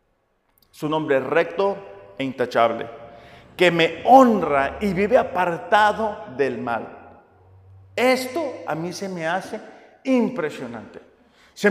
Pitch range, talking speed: 145-215 Hz, 115 wpm